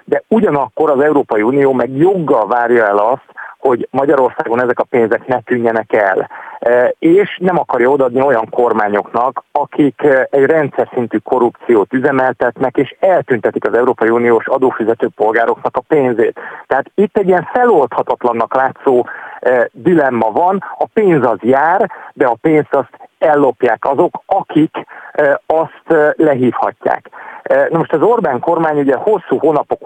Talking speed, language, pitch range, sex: 135 wpm, Hungarian, 125-170 Hz, male